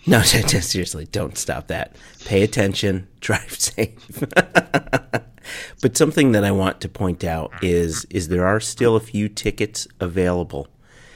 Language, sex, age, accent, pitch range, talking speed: English, male, 30-49, American, 85-110 Hz, 150 wpm